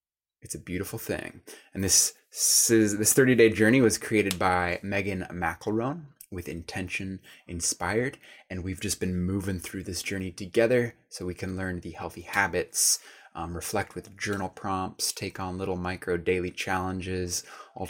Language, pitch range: English, 90-115 Hz